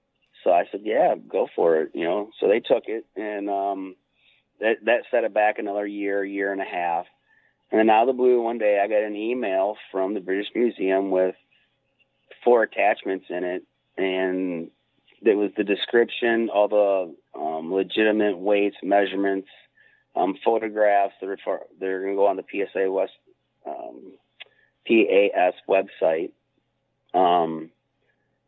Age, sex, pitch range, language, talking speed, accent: 30-49, male, 95-115 Hz, English, 155 wpm, American